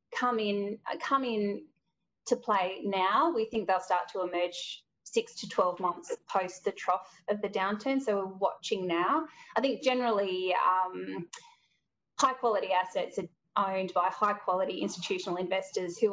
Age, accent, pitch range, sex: 20-39, Australian, 190-245 Hz, female